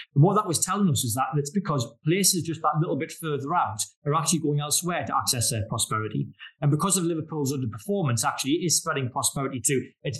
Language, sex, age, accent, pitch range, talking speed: English, male, 30-49, British, 125-160 Hz, 220 wpm